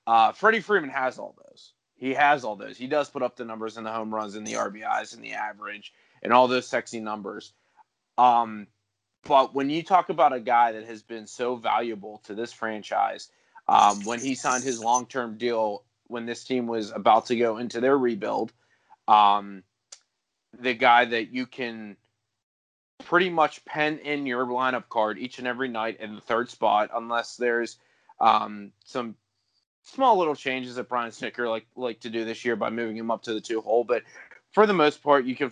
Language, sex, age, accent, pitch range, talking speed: English, male, 30-49, American, 115-140 Hz, 195 wpm